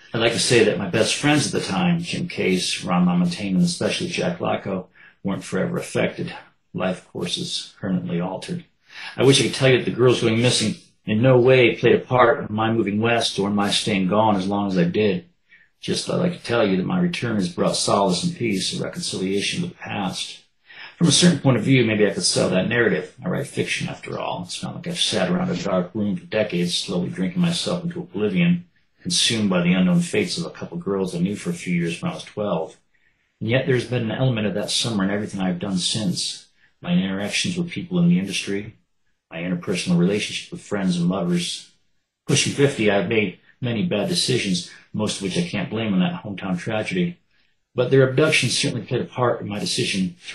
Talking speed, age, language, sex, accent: 220 wpm, 40-59, English, male, American